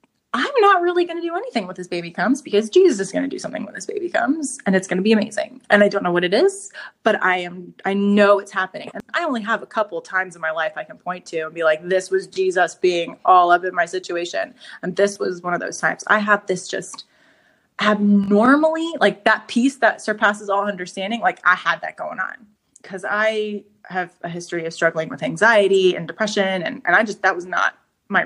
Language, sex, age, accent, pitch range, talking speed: English, female, 20-39, American, 180-220 Hz, 240 wpm